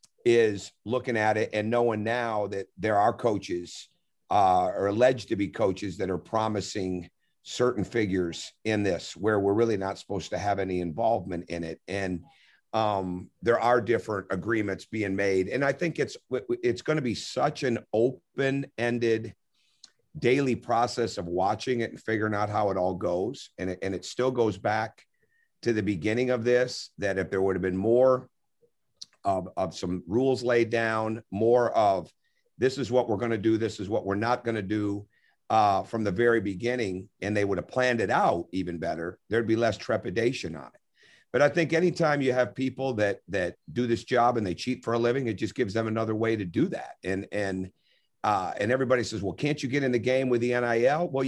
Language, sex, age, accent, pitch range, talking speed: English, male, 50-69, American, 100-125 Hz, 200 wpm